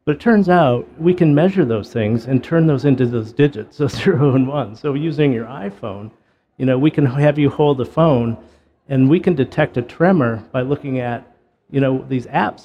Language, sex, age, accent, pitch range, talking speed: English, male, 50-69, American, 115-145 Hz, 215 wpm